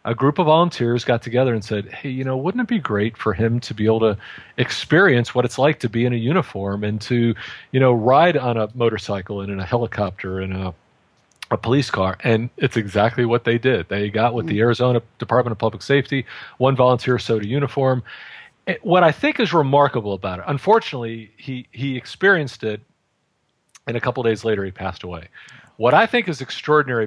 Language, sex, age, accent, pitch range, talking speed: English, male, 40-59, American, 105-125 Hz, 210 wpm